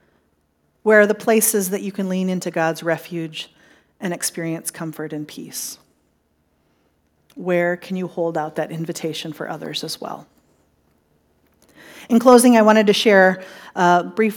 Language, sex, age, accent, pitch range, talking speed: English, female, 40-59, American, 165-215 Hz, 145 wpm